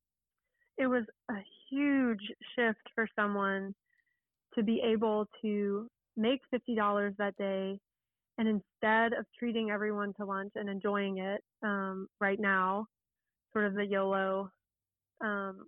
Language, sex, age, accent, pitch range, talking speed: English, female, 20-39, American, 200-230 Hz, 125 wpm